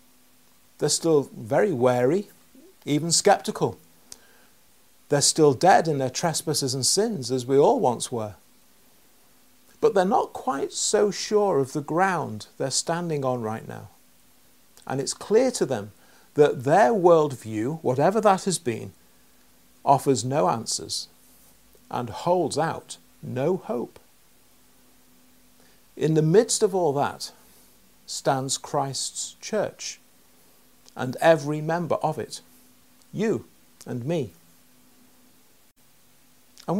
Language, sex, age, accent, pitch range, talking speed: English, male, 50-69, British, 135-175 Hz, 115 wpm